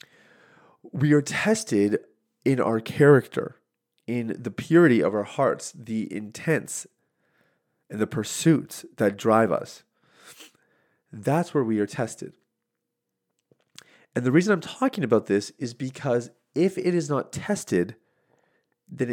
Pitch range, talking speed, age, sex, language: 100-145 Hz, 125 wpm, 30-49, male, English